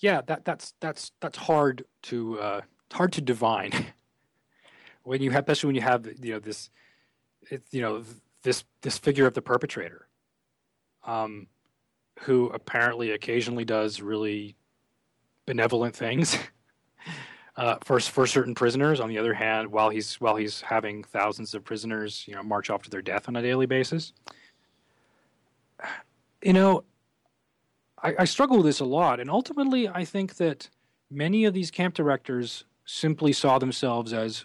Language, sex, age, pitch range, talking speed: English, male, 30-49, 110-140 Hz, 155 wpm